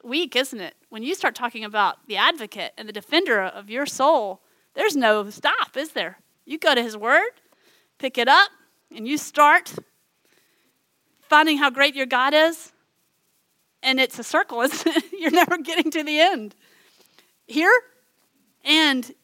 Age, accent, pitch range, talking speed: 30-49, American, 210-285 Hz, 160 wpm